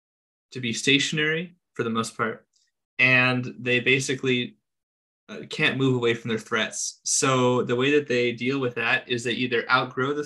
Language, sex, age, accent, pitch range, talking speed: English, male, 20-39, American, 115-130 Hz, 175 wpm